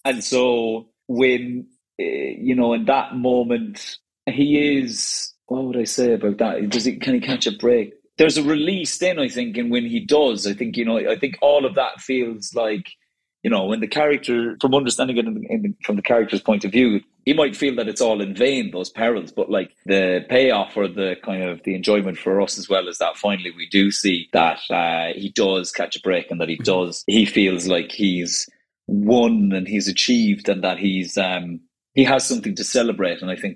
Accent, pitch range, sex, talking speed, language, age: British, 95-125 Hz, male, 220 wpm, English, 30-49